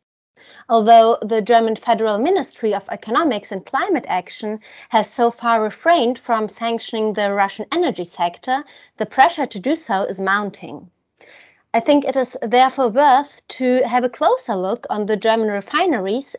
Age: 30-49